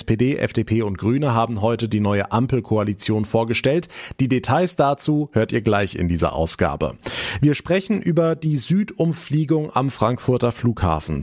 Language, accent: German, German